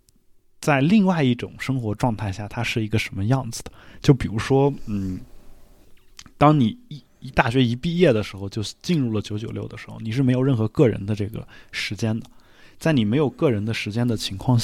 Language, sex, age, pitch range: Chinese, male, 20-39, 100-125 Hz